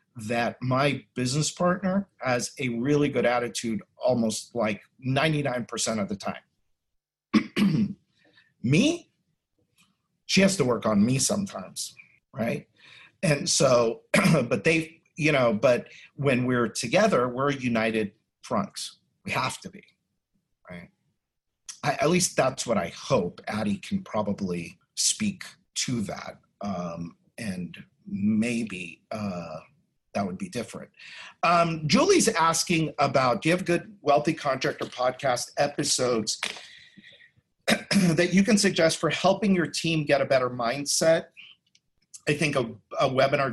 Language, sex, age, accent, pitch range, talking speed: English, male, 50-69, American, 120-170 Hz, 125 wpm